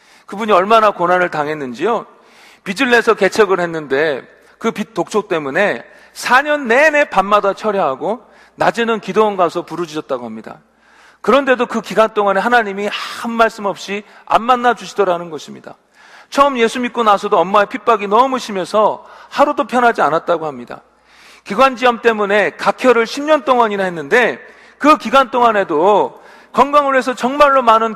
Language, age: Korean, 40-59